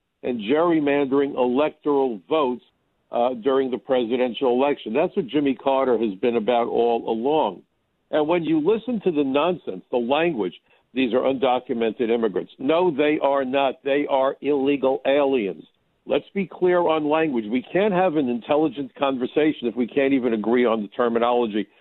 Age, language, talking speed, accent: 60-79, English, 160 wpm, American